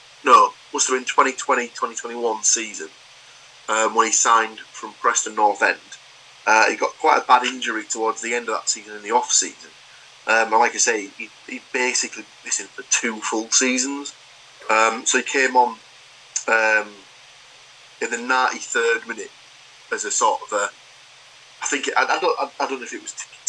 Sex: male